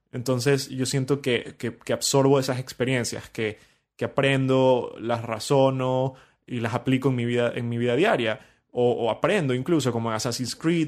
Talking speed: 170 wpm